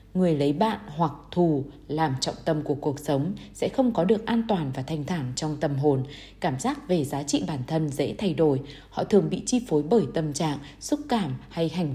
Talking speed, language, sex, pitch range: 225 wpm, Vietnamese, female, 145-200 Hz